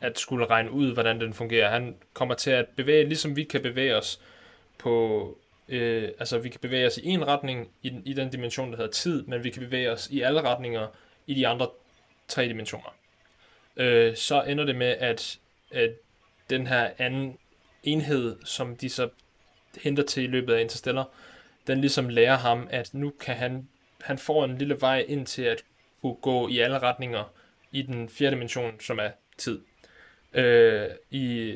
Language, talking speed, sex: Danish, 185 wpm, male